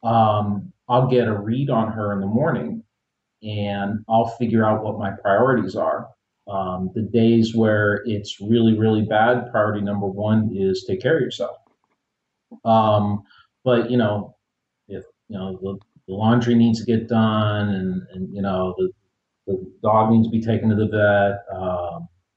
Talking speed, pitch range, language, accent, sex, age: 170 wpm, 105-120 Hz, English, American, male, 40-59